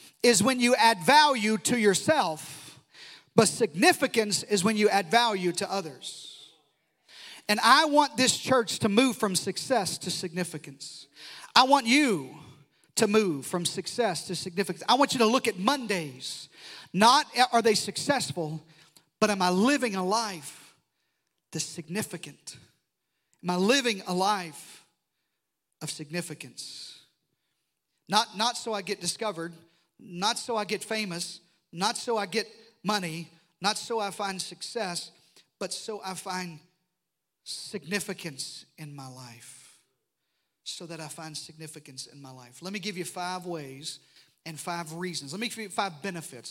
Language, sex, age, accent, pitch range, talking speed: English, male, 40-59, American, 160-215 Hz, 145 wpm